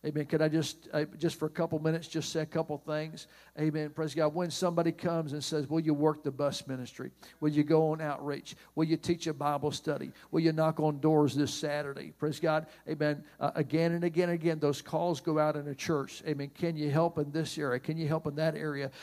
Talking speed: 235 wpm